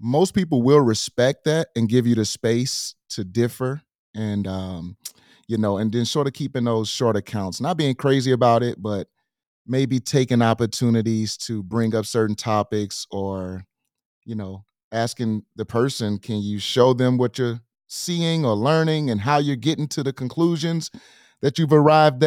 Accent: American